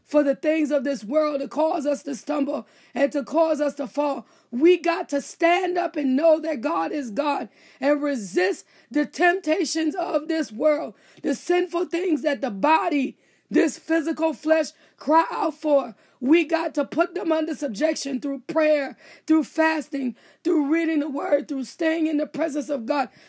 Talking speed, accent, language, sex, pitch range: 180 wpm, American, English, female, 285-335 Hz